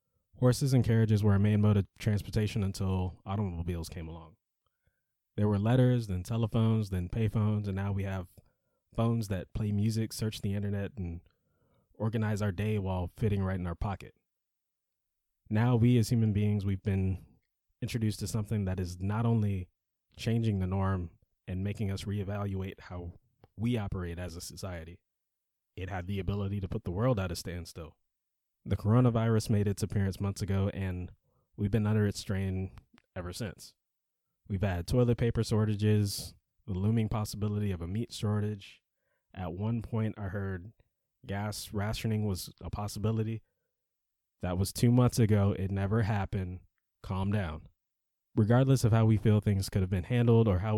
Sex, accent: male, American